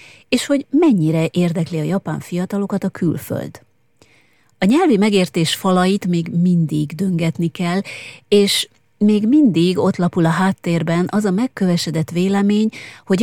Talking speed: 130 wpm